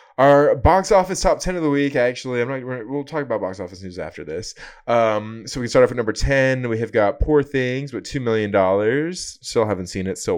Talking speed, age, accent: 245 wpm, 20-39, American